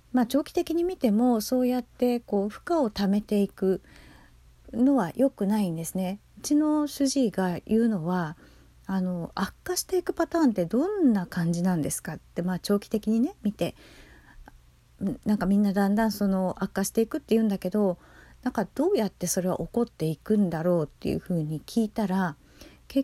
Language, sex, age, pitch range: Japanese, female, 40-59, 180-260 Hz